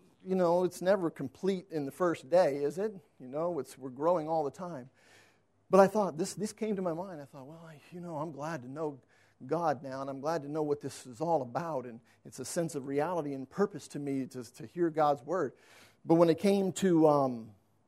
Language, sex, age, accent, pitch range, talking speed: English, male, 50-69, American, 140-200 Hz, 240 wpm